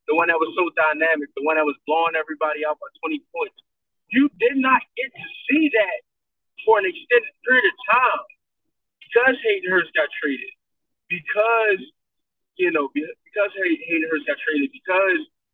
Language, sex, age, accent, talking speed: English, male, 30-49, American, 165 wpm